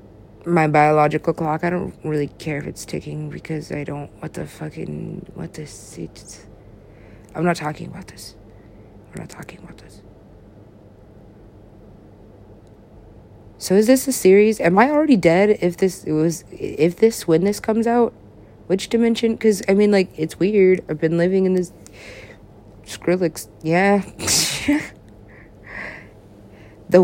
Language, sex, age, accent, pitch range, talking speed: English, female, 20-39, American, 105-175 Hz, 140 wpm